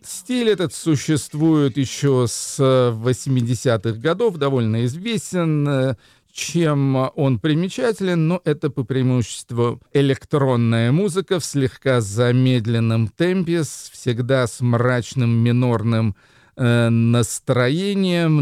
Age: 40-59